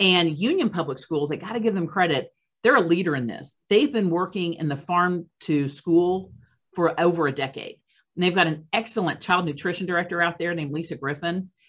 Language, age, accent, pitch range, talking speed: English, 40-59, American, 160-220 Hz, 205 wpm